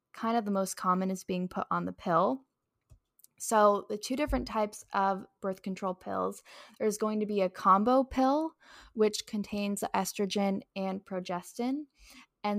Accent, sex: American, female